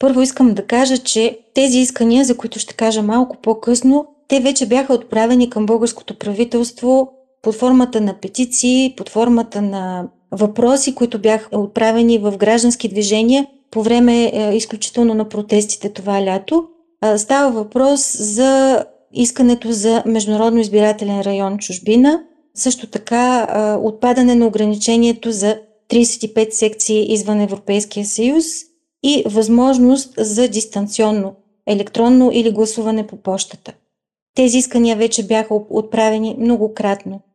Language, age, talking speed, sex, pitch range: Bulgarian, 30-49, 125 wpm, female, 215-255 Hz